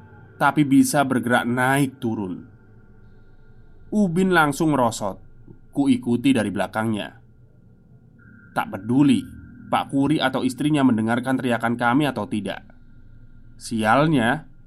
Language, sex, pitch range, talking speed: Indonesian, male, 110-140 Hz, 95 wpm